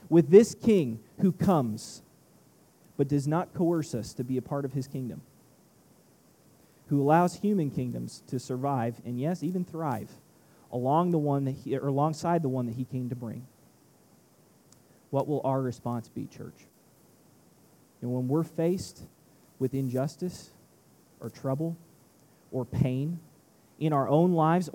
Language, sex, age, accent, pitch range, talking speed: English, male, 30-49, American, 125-160 Hz, 135 wpm